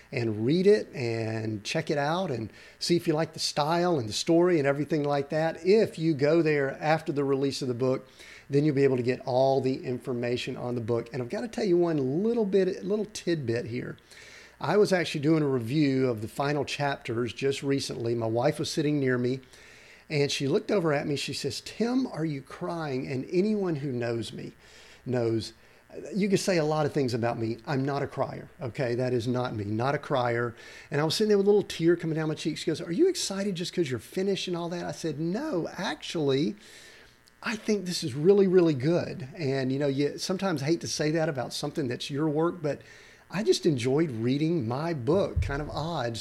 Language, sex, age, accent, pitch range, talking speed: English, male, 50-69, American, 125-170 Hz, 225 wpm